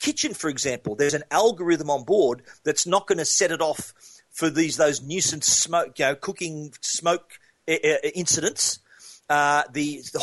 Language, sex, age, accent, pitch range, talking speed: English, male, 40-59, Australian, 135-165 Hz, 165 wpm